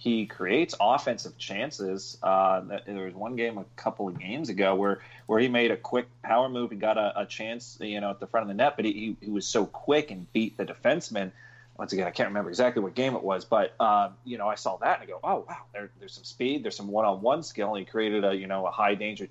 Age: 30-49